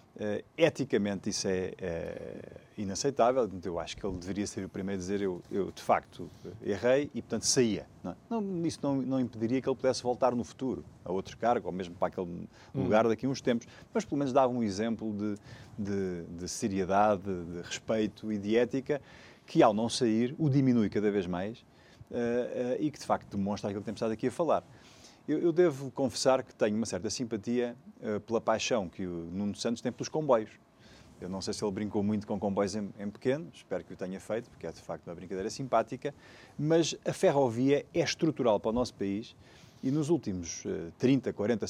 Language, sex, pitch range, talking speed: Portuguese, male, 100-125 Hz, 205 wpm